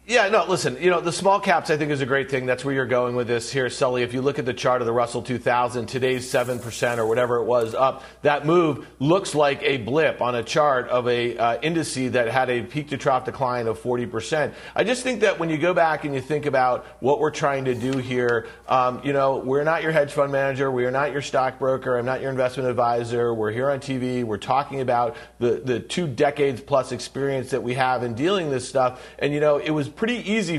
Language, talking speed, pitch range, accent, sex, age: English, 245 wpm, 125-155 Hz, American, male, 40-59